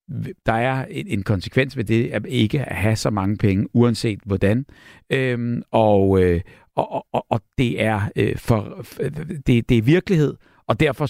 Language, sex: Danish, male